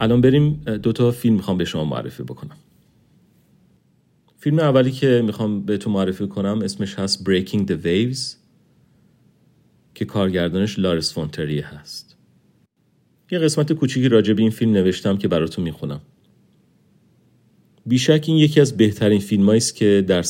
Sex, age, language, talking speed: male, 40-59, Persian, 140 wpm